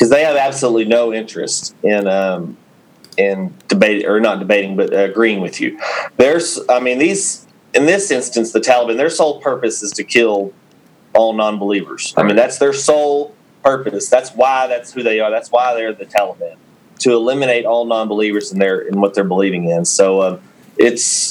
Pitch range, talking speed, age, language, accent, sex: 105-145 Hz, 185 wpm, 30-49, English, American, male